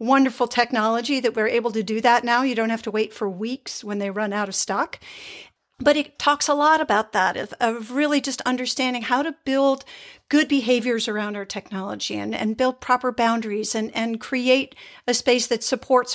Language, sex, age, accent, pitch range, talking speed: English, female, 50-69, American, 215-275 Hz, 200 wpm